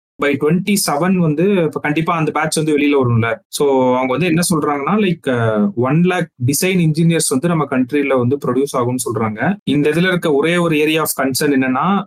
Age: 30-49